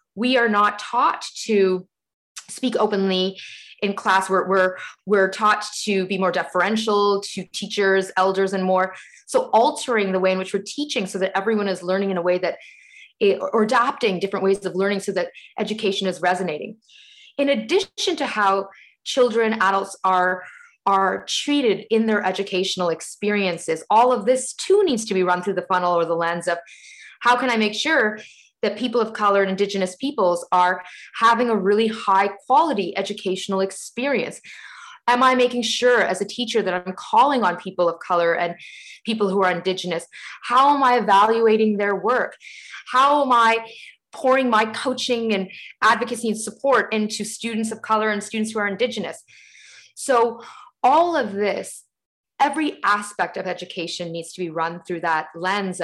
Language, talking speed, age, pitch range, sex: English, 170 wpm, 20-39, 185-240 Hz, female